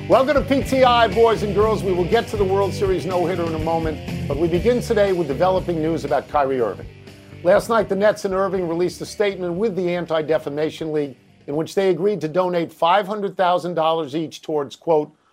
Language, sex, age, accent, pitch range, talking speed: English, male, 50-69, American, 160-195 Hz, 195 wpm